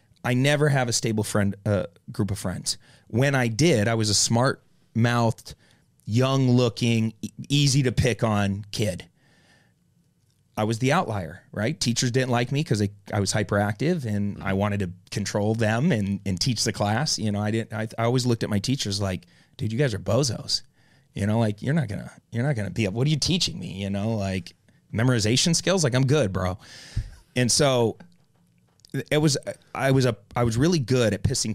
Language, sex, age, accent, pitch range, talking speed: English, male, 30-49, American, 100-130 Hz, 200 wpm